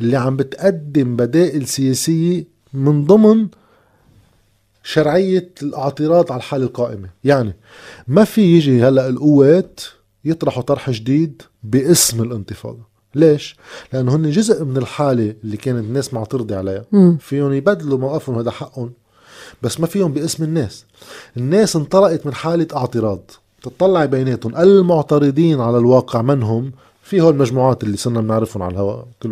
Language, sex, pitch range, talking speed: Arabic, male, 115-160 Hz, 130 wpm